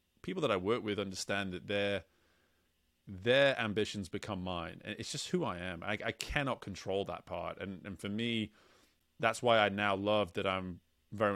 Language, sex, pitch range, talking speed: English, male, 95-110 Hz, 190 wpm